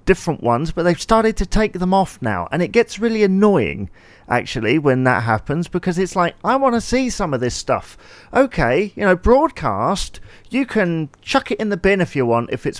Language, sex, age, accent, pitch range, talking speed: English, male, 40-59, British, 130-195 Hz, 215 wpm